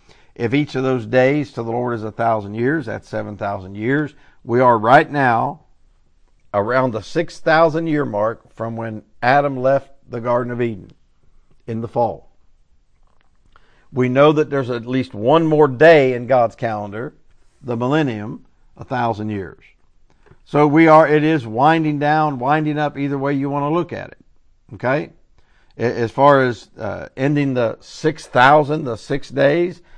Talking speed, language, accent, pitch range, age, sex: 165 wpm, English, American, 120-160 Hz, 50-69, male